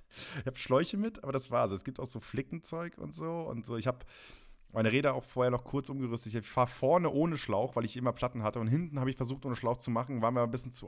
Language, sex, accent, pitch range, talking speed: German, male, German, 100-130 Hz, 270 wpm